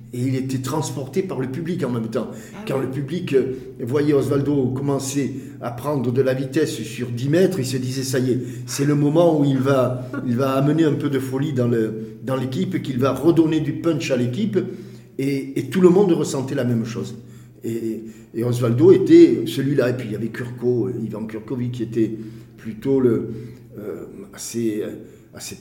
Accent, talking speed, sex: French, 195 wpm, male